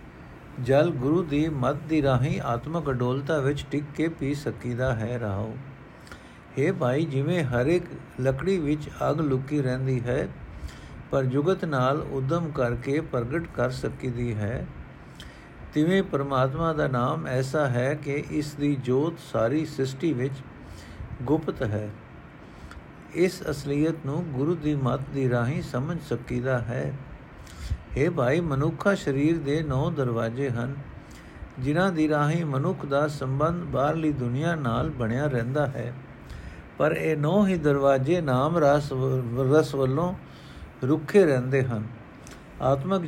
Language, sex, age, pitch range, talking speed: Punjabi, male, 60-79, 125-155 Hz, 130 wpm